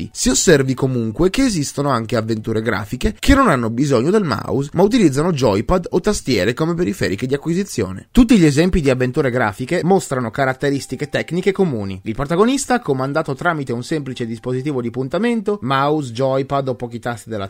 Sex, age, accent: male, 30-49, native